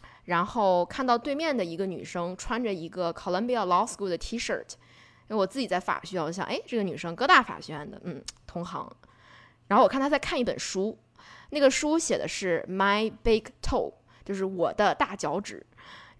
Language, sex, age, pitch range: Chinese, female, 20-39, 175-235 Hz